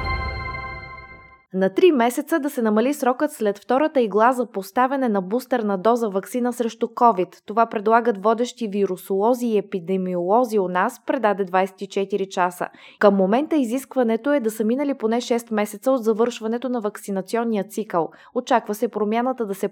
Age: 20-39